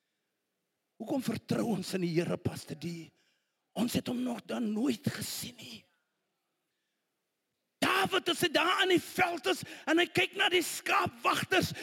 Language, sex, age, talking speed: English, male, 40-59, 140 wpm